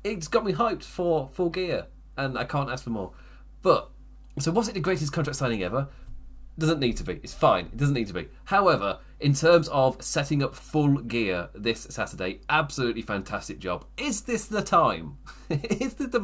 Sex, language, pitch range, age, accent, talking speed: male, English, 105-150 Hz, 30-49, British, 195 wpm